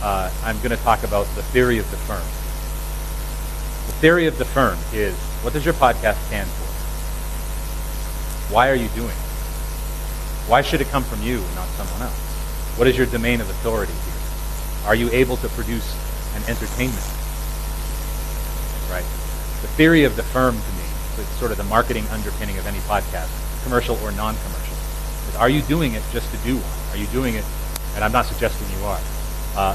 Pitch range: 80-120 Hz